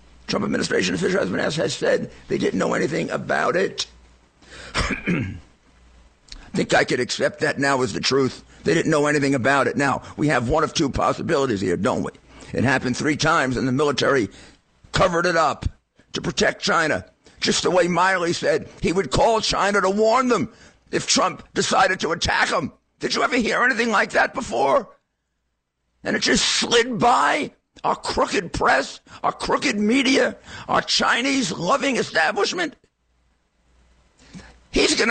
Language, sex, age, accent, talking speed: English, male, 50-69, American, 160 wpm